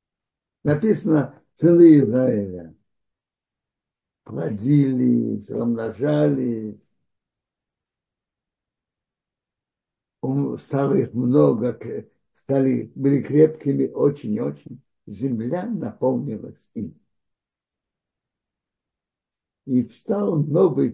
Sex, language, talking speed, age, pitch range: male, Russian, 50 wpm, 60-79, 125-175 Hz